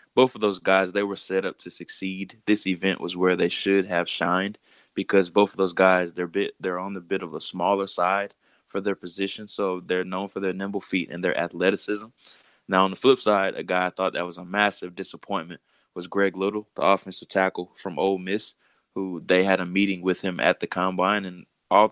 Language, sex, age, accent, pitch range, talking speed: English, male, 20-39, American, 90-100 Hz, 220 wpm